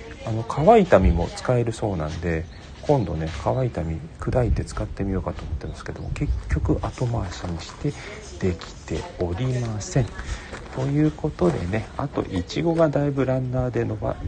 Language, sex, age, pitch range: Japanese, male, 40-59, 85-135 Hz